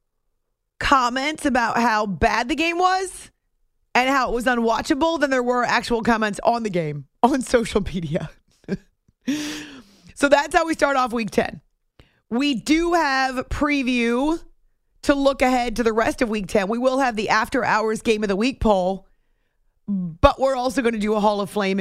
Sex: female